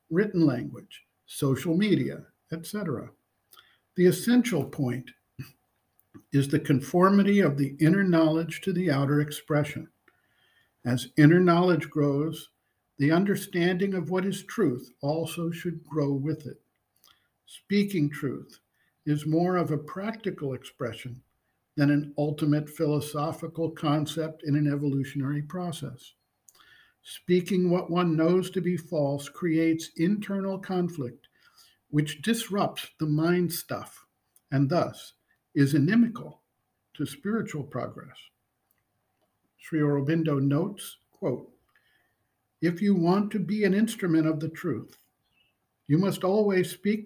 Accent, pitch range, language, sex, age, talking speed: American, 145-180 Hz, English, male, 50-69, 115 wpm